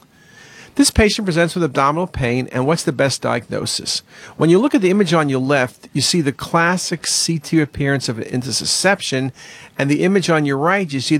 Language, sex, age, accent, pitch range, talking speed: English, male, 50-69, American, 125-170 Hz, 200 wpm